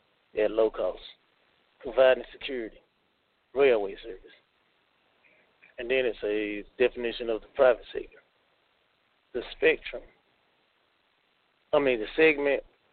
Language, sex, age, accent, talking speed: English, male, 30-49, American, 100 wpm